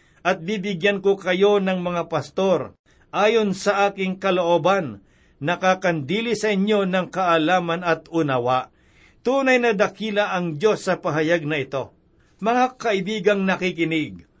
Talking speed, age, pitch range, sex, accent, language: 125 wpm, 50-69, 165-210 Hz, male, native, Filipino